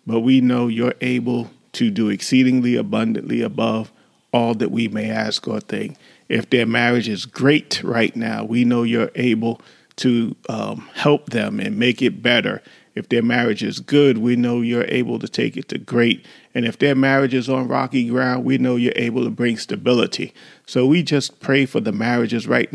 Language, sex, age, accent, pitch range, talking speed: English, male, 40-59, American, 120-140 Hz, 195 wpm